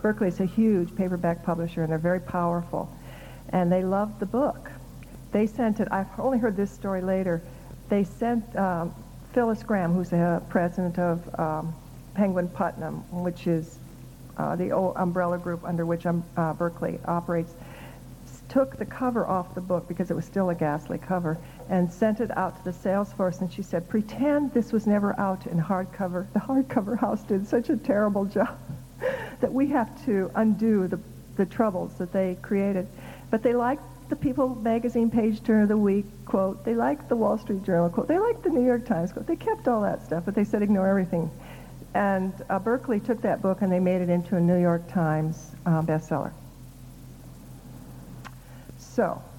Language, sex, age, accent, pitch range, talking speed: English, female, 60-79, American, 175-230 Hz, 185 wpm